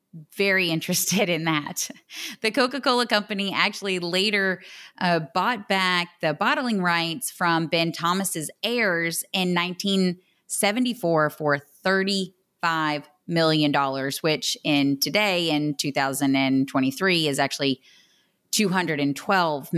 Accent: American